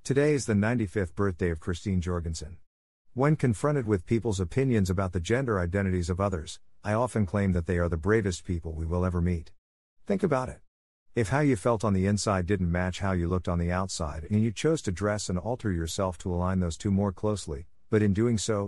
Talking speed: 220 wpm